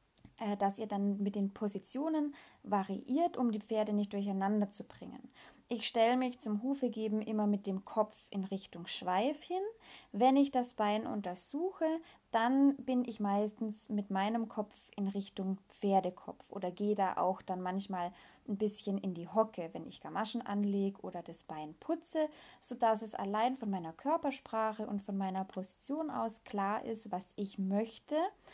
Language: German